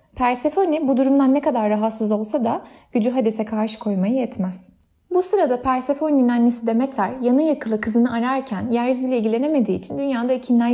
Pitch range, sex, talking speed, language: 220-280 Hz, female, 150 wpm, Turkish